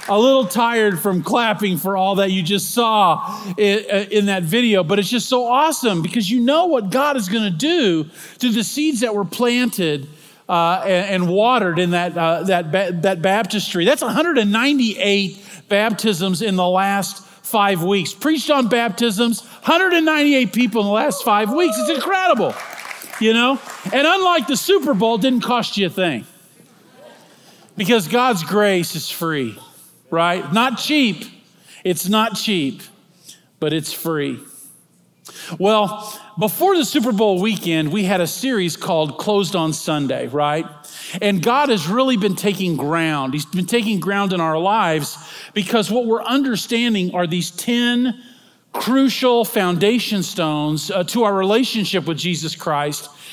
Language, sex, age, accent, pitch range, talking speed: English, male, 40-59, American, 180-240 Hz, 155 wpm